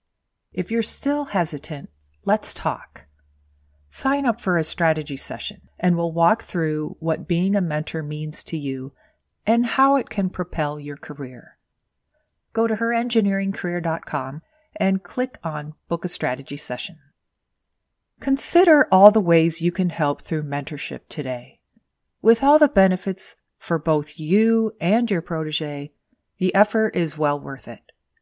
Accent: American